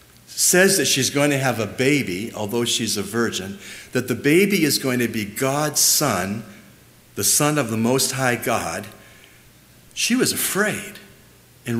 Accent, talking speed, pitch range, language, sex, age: American, 165 wpm, 105-145 Hz, English, male, 50-69